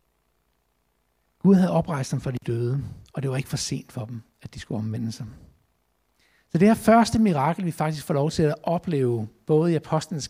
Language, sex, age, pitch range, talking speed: Danish, male, 60-79, 120-170 Hz, 205 wpm